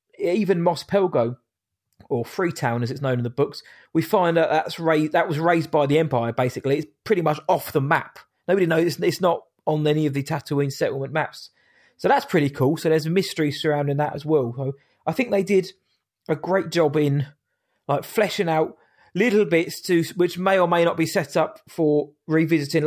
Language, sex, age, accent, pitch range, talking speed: English, male, 20-39, British, 140-175 Hz, 200 wpm